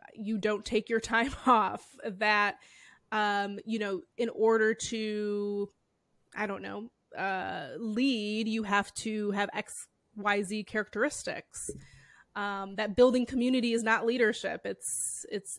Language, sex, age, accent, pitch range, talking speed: English, female, 20-39, American, 205-230 Hz, 135 wpm